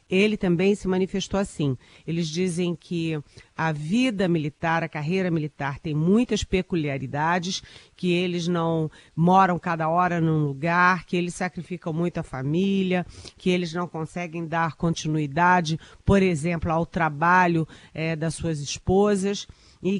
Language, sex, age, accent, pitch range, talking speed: Portuguese, female, 40-59, Brazilian, 165-190 Hz, 140 wpm